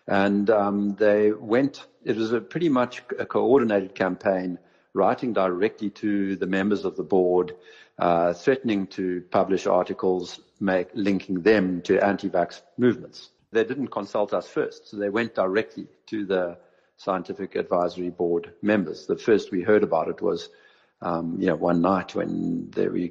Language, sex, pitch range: English, male, 90-105 Hz